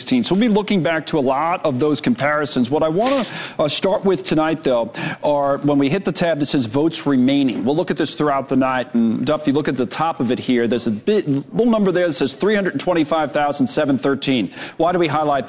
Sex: male